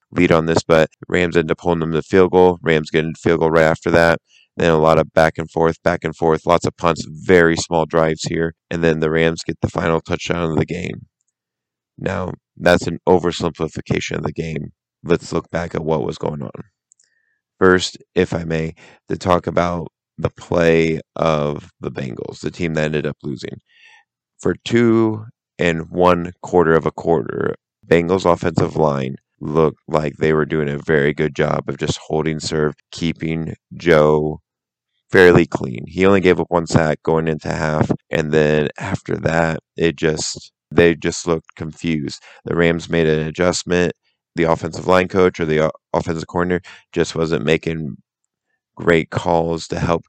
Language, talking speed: English, 175 wpm